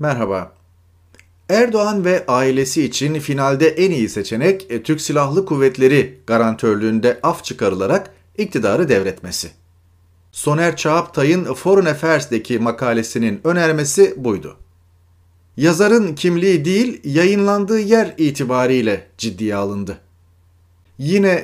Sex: male